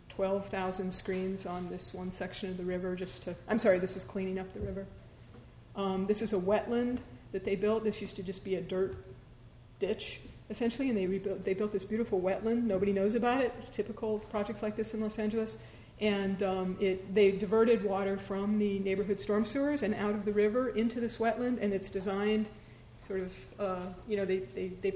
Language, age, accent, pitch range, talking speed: English, 40-59, American, 185-215 Hz, 205 wpm